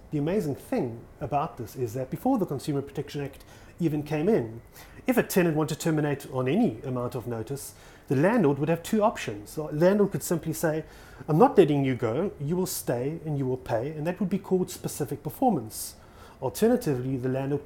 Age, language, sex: 30-49, English, male